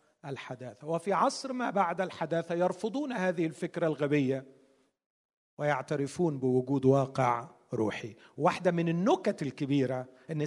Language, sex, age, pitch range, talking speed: Arabic, male, 50-69, 145-215 Hz, 110 wpm